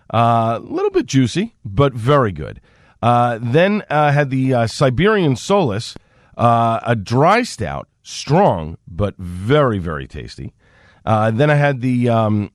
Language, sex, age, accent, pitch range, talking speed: English, male, 40-59, American, 95-135 Hz, 155 wpm